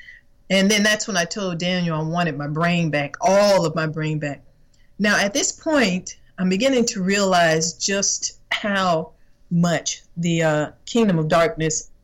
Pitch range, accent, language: 165-225 Hz, American, English